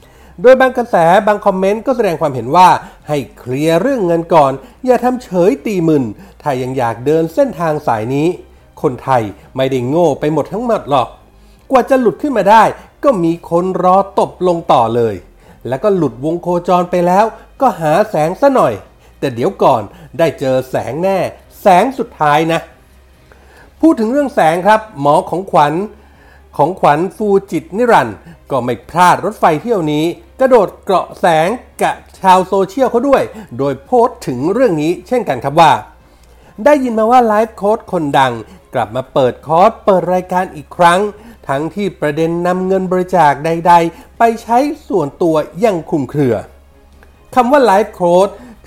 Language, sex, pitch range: Thai, male, 150-220 Hz